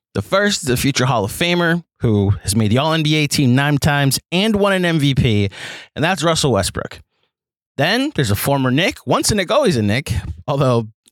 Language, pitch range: English, 110-150 Hz